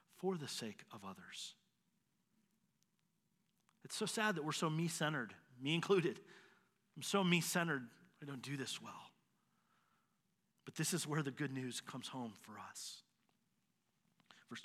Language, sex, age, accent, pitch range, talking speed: English, male, 40-59, American, 140-200 Hz, 150 wpm